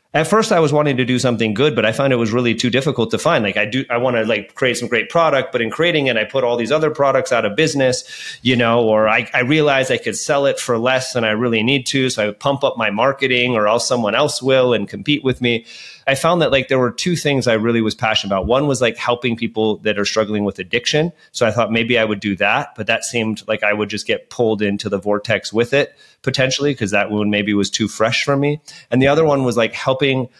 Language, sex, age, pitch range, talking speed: English, male, 30-49, 110-135 Hz, 270 wpm